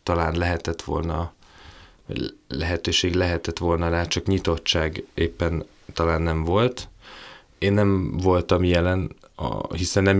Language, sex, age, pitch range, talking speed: Hungarian, male, 20-39, 85-95 Hz, 110 wpm